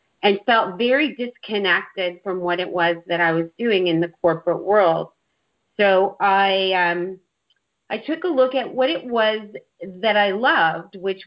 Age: 40-59